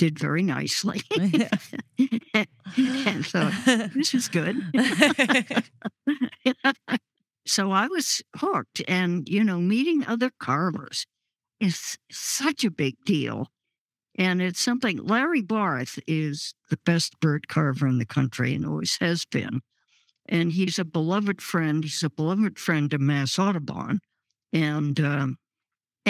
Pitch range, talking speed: 155-220 Hz, 125 wpm